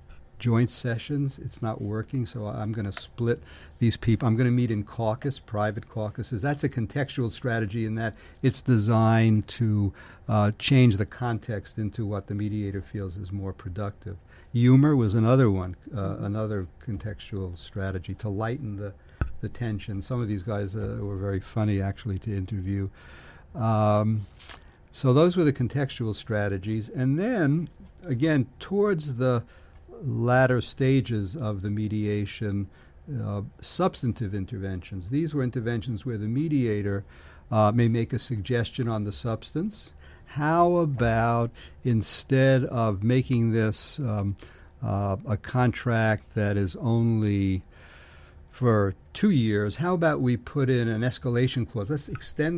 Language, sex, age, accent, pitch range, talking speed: English, male, 60-79, American, 100-125 Hz, 145 wpm